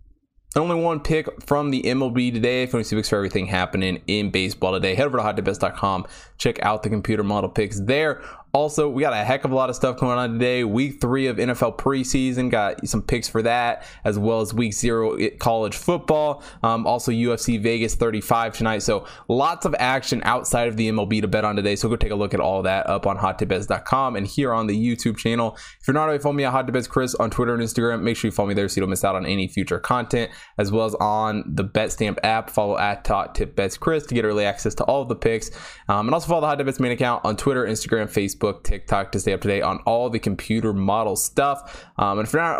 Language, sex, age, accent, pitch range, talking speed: English, male, 20-39, American, 105-130 Hz, 240 wpm